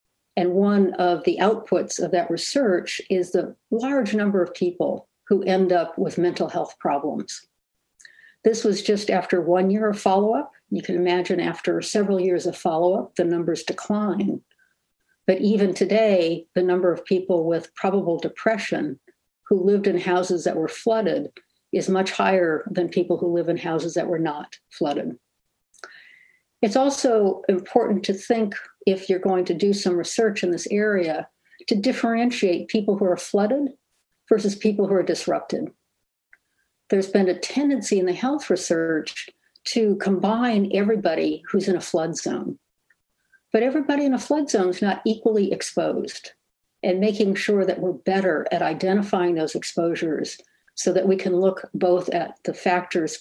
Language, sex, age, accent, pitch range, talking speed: English, female, 60-79, American, 180-215 Hz, 160 wpm